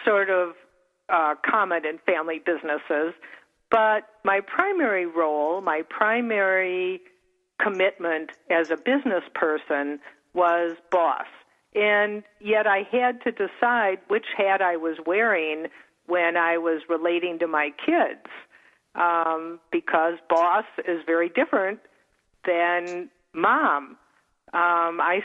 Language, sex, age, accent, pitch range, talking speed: English, female, 50-69, American, 160-200 Hz, 115 wpm